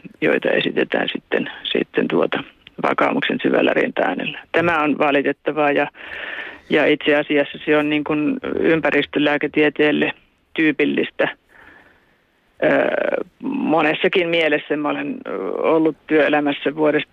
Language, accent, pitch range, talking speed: Finnish, native, 145-160 Hz, 100 wpm